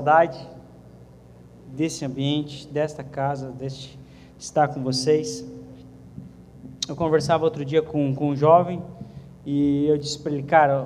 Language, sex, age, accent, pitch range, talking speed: English, male, 20-39, Brazilian, 135-175 Hz, 125 wpm